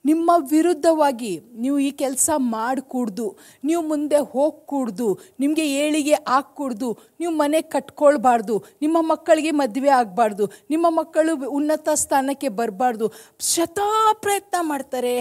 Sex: female